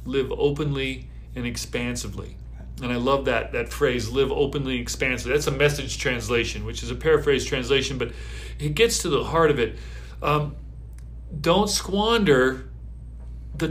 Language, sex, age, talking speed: English, male, 40-59, 155 wpm